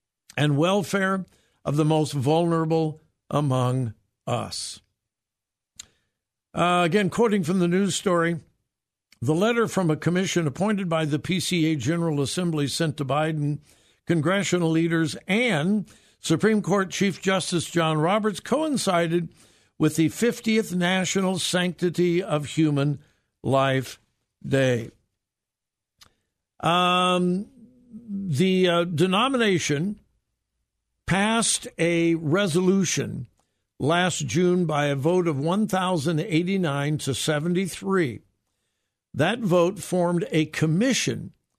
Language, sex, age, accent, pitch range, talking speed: English, male, 60-79, American, 145-185 Hz, 100 wpm